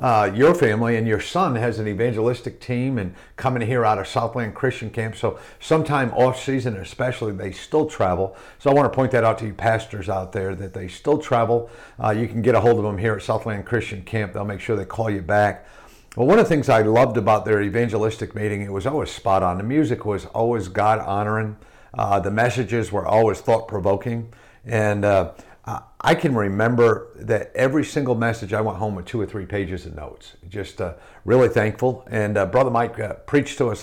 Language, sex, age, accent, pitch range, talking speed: English, male, 50-69, American, 105-125 Hz, 215 wpm